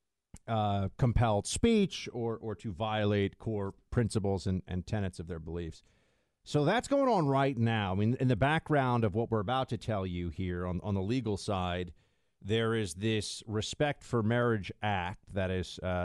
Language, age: English, 50-69